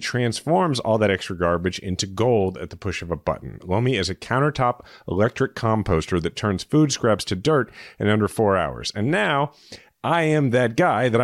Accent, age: American, 30-49